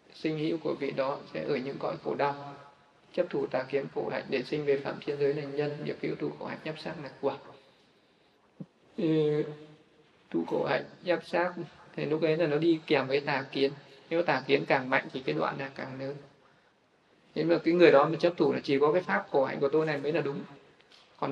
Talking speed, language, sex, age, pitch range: 230 wpm, Vietnamese, male, 20-39, 140-165 Hz